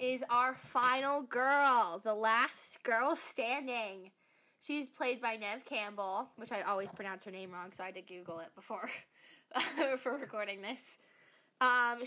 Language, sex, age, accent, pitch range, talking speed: English, female, 10-29, American, 215-275 Hz, 155 wpm